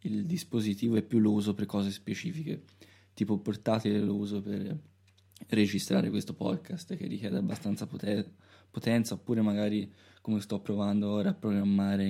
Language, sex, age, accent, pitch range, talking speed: Italian, male, 20-39, native, 100-115 Hz, 145 wpm